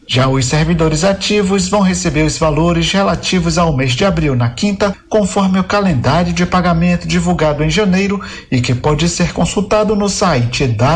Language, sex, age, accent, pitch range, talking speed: Portuguese, male, 50-69, Brazilian, 150-195 Hz, 165 wpm